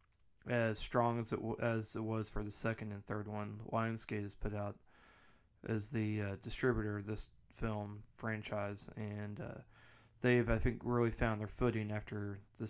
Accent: American